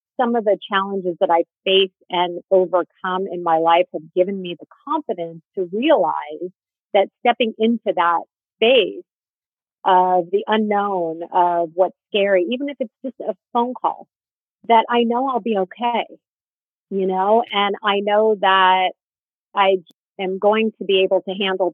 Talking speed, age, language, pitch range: 155 wpm, 40-59, English, 175-210 Hz